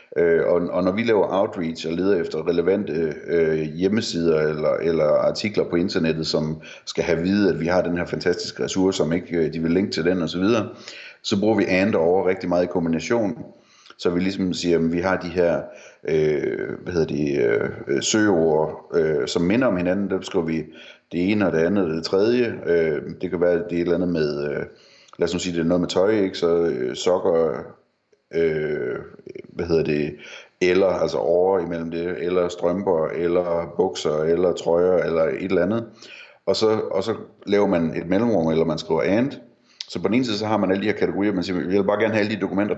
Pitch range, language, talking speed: 85-110 Hz, Danish, 210 wpm